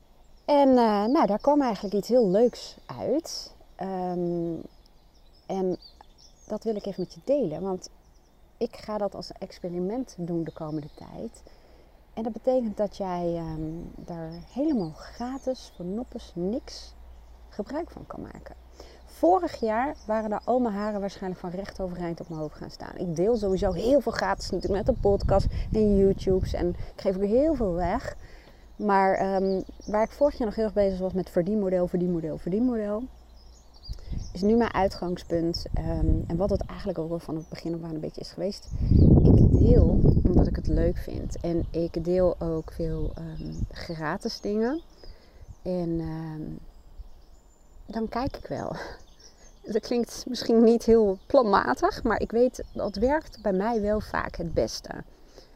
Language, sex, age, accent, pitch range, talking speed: Dutch, female, 30-49, Dutch, 170-225 Hz, 160 wpm